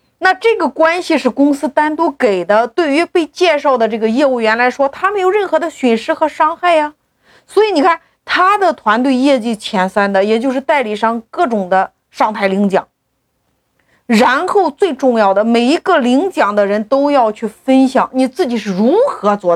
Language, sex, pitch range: Chinese, female, 220-315 Hz